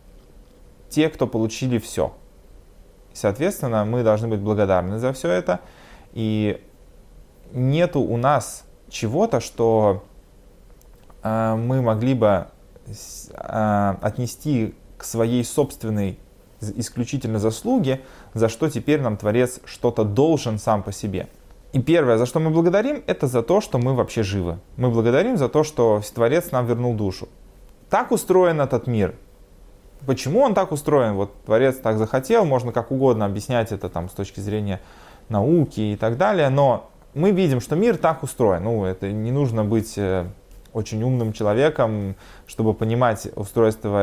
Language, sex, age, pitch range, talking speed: Russian, male, 20-39, 100-130 Hz, 140 wpm